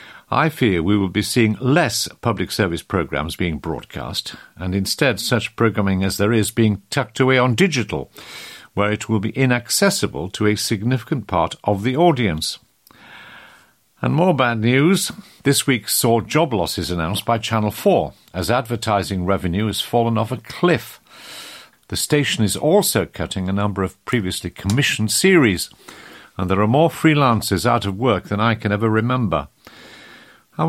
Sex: male